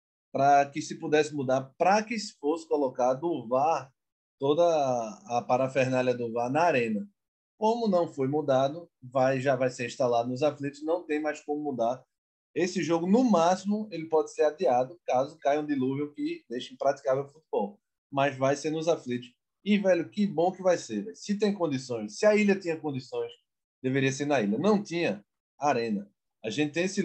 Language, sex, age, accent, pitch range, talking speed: Portuguese, male, 20-39, Brazilian, 135-190 Hz, 185 wpm